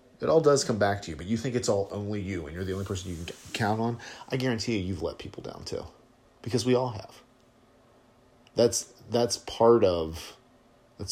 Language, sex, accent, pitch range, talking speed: English, male, American, 85-115 Hz, 215 wpm